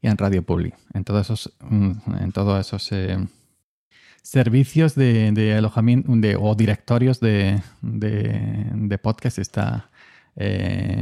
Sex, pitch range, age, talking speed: male, 100-125 Hz, 40-59, 125 wpm